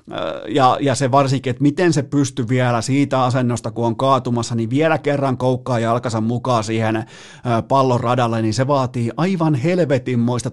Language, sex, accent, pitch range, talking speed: Finnish, male, native, 120-150 Hz, 160 wpm